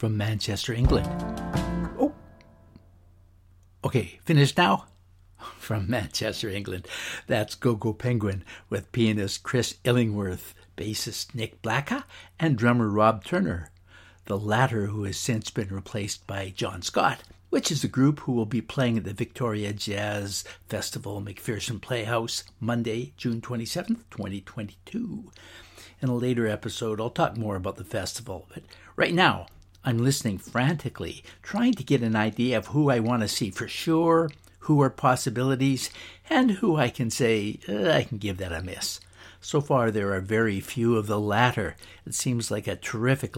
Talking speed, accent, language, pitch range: 155 wpm, American, English, 100-130 Hz